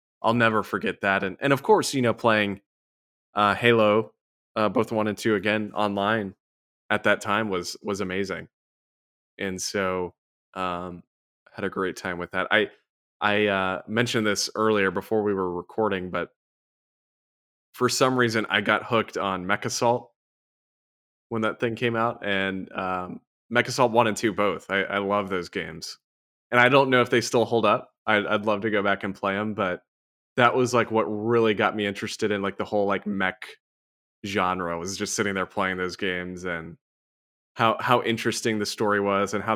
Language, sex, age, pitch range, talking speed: English, male, 20-39, 95-110 Hz, 190 wpm